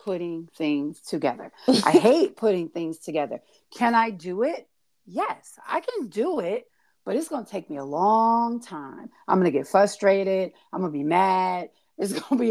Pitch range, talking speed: 180-240 Hz, 180 wpm